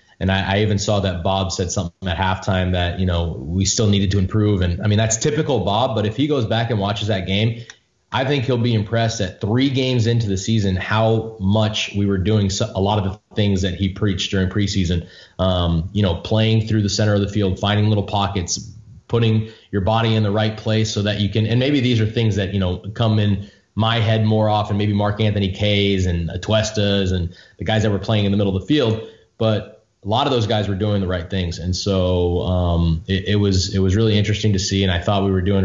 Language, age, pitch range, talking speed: English, 20-39, 95-110 Hz, 245 wpm